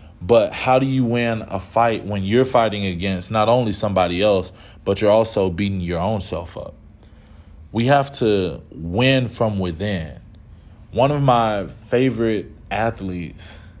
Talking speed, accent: 150 wpm, American